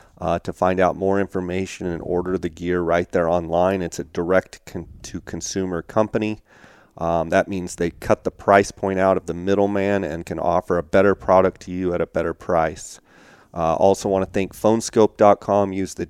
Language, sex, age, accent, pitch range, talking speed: English, male, 30-49, American, 90-100 Hz, 185 wpm